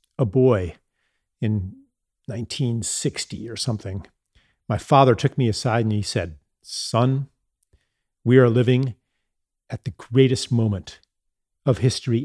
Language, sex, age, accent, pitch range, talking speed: English, male, 50-69, American, 105-130 Hz, 120 wpm